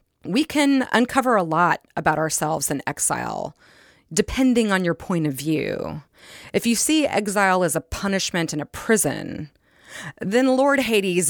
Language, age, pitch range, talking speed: English, 30-49, 160-220 Hz, 150 wpm